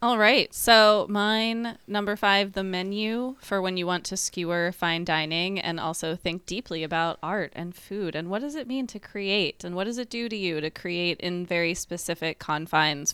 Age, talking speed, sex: 20-39, 200 wpm, female